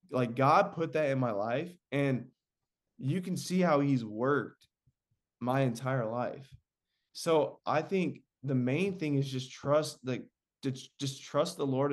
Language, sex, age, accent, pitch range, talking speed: English, male, 20-39, American, 125-155 Hz, 155 wpm